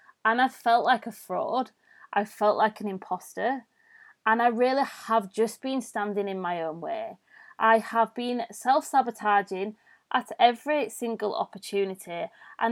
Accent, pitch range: British, 210-255 Hz